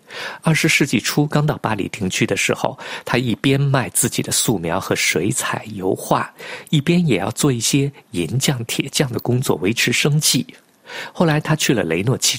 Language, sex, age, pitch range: Chinese, male, 50-69, 130-165 Hz